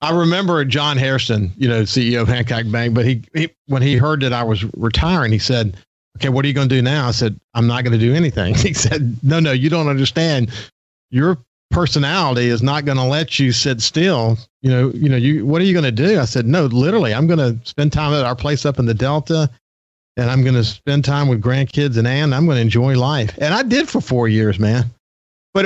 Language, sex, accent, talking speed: English, male, American, 245 wpm